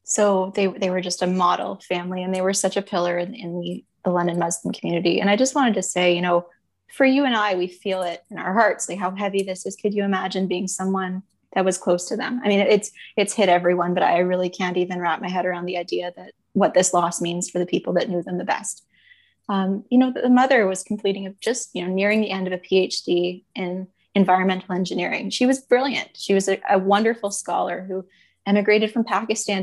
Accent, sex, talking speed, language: American, female, 235 wpm, English